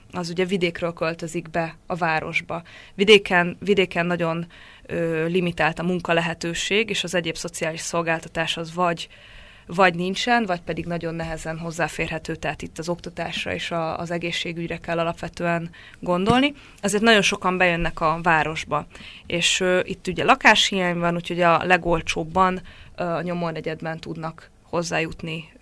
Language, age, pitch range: Hungarian, 20-39, 165-185 Hz